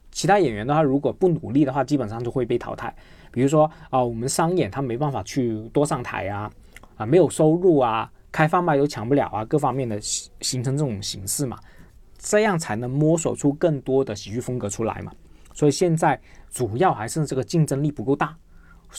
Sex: male